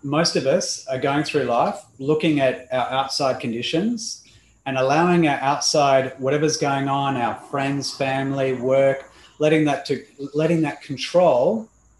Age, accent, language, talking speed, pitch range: 30-49, Australian, English, 145 wpm, 130-155 Hz